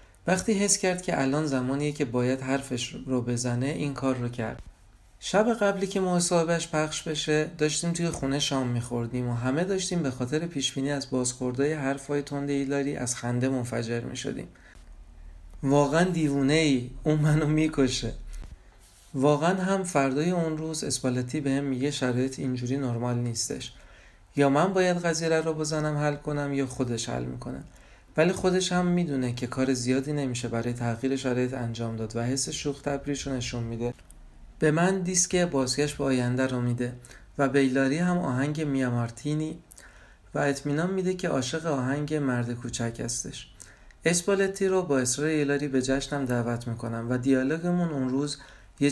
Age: 40-59